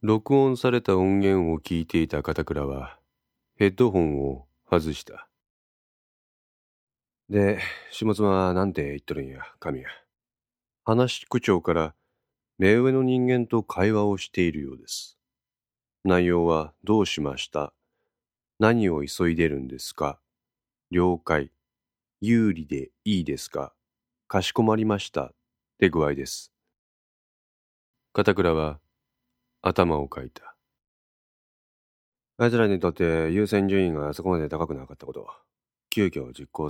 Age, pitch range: 40-59, 75-105 Hz